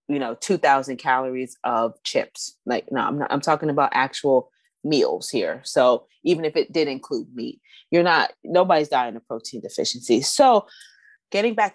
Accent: American